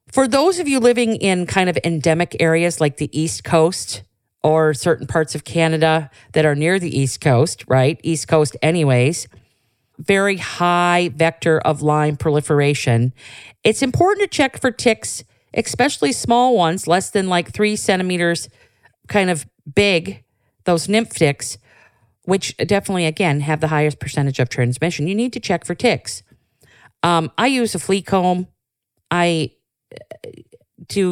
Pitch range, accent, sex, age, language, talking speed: 140-180 Hz, American, female, 50-69, English, 150 wpm